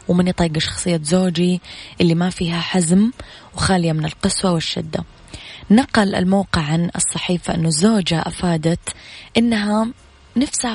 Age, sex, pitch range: 20-39, female, 160-185 Hz